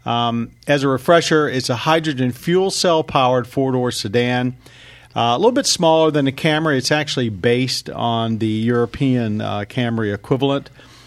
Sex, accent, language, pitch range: male, American, English, 115-135 Hz